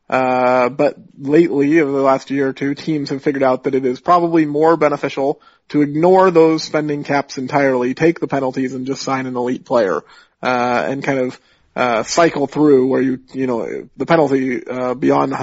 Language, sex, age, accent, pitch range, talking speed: English, male, 30-49, American, 125-145 Hz, 190 wpm